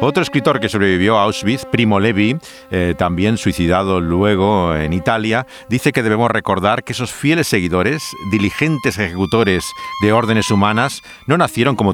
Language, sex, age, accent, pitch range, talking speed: Spanish, male, 50-69, Spanish, 95-135 Hz, 150 wpm